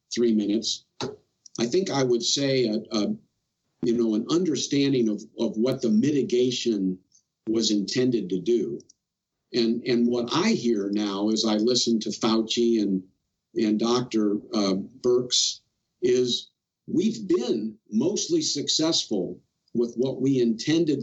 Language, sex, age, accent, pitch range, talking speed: English, male, 50-69, American, 115-145 Hz, 135 wpm